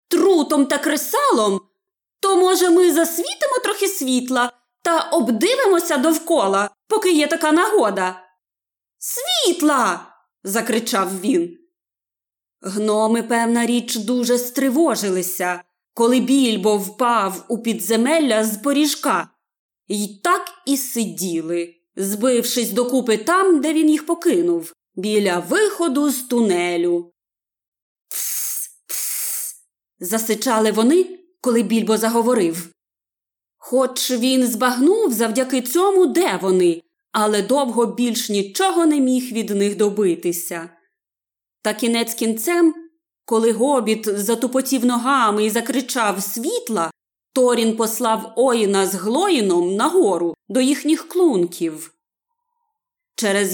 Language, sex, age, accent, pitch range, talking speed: Ukrainian, female, 20-39, native, 205-320 Hz, 100 wpm